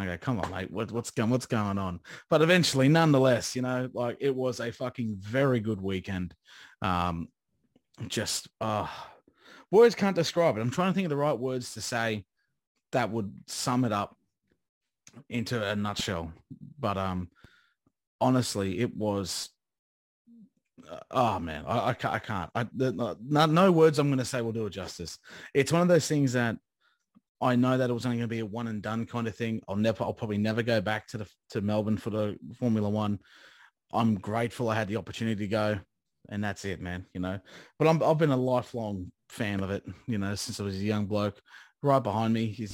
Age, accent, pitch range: 30-49, Australian, 105-130 Hz